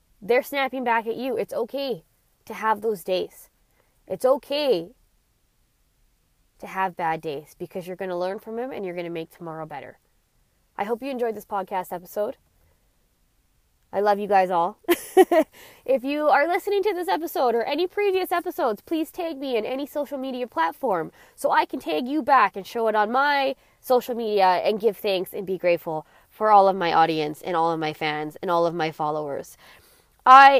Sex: female